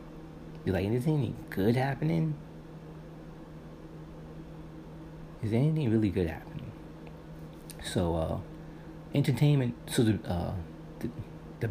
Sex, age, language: male, 30-49, English